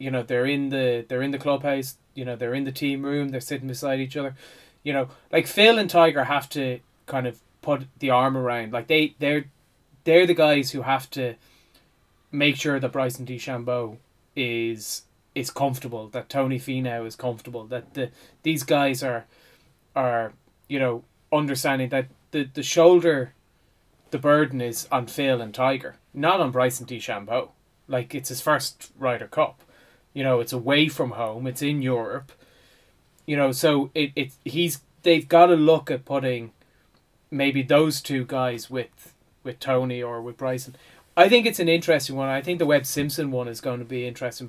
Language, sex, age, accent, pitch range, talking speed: English, male, 20-39, Irish, 125-145 Hz, 180 wpm